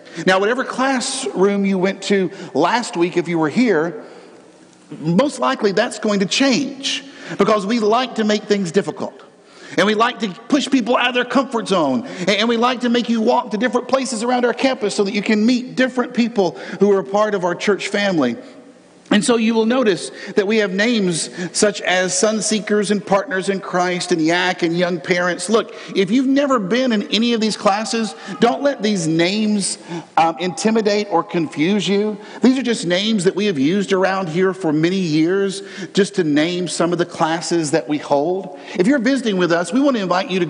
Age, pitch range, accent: 50-69, 175-225 Hz, American